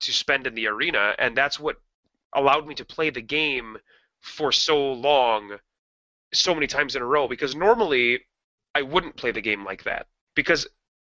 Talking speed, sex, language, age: 180 wpm, male, English, 30-49